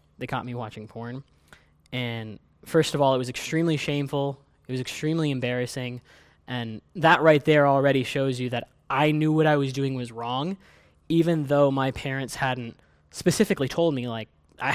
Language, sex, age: English, male, 10-29